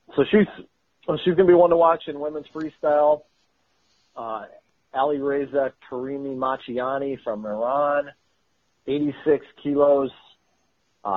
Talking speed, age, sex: 130 wpm, 40-59, male